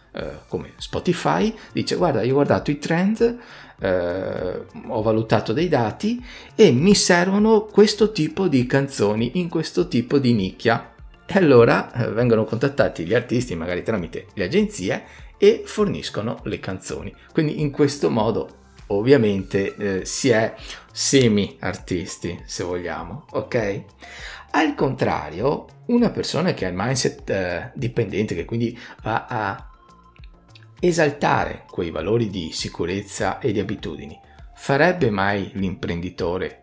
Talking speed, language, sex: 130 wpm, Italian, male